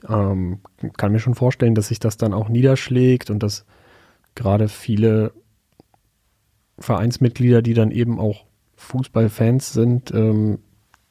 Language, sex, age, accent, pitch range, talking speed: German, male, 30-49, German, 105-130 Hz, 125 wpm